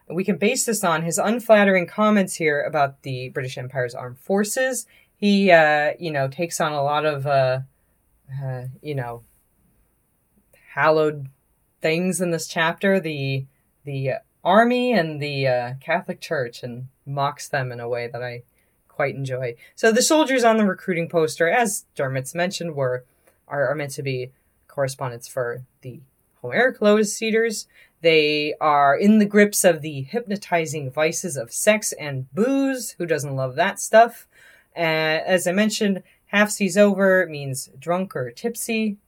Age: 20-39